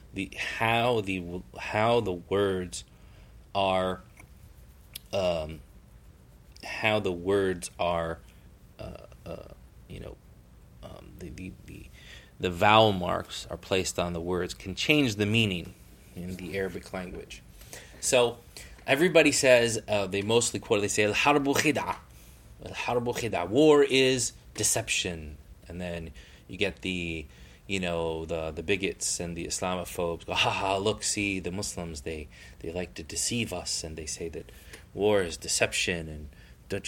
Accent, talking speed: American, 140 wpm